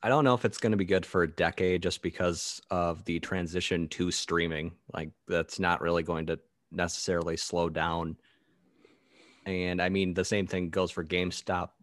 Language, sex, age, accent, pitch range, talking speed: English, male, 20-39, American, 85-95 Hz, 190 wpm